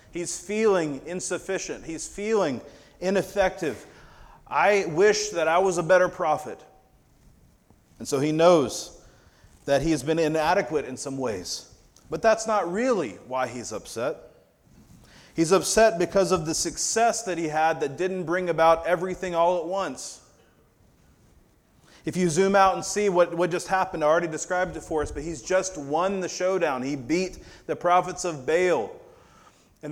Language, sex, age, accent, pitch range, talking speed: English, male, 30-49, American, 165-205 Hz, 155 wpm